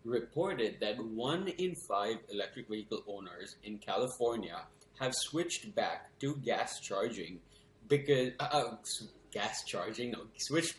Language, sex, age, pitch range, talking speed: English, male, 20-39, 105-135 Hz, 130 wpm